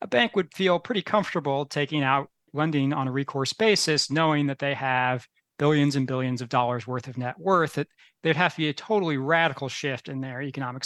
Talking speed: 210 wpm